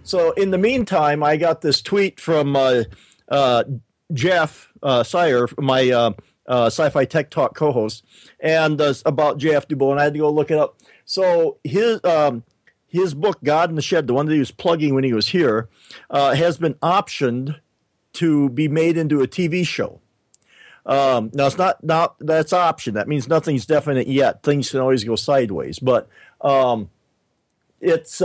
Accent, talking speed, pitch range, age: American, 180 wpm, 130-165 Hz, 50-69